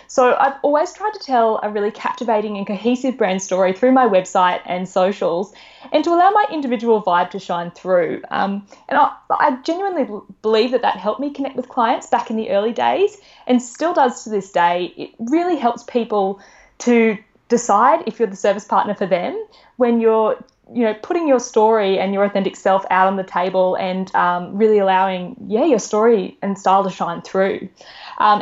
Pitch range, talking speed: 195-250 Hz, 195 wpm